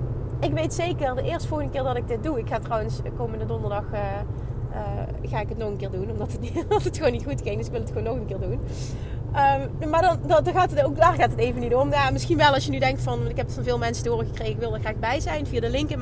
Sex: female